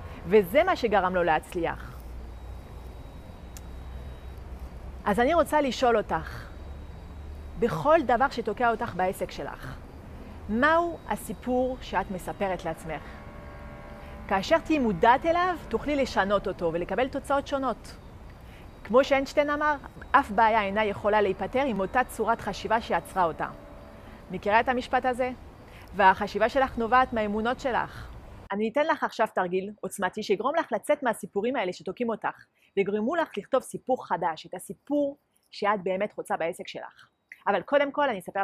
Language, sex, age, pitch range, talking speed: Hebrew, female, 30-49, 180-270 Hz, 130 wpm